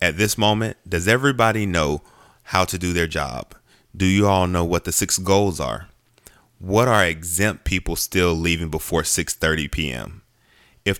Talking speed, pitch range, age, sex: 165 wpm, 85-105 Hz, 20-39, male